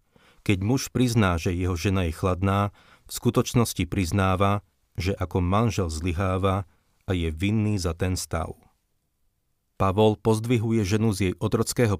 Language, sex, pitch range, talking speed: Slovak, male, 90-105 Hz, 135 wpm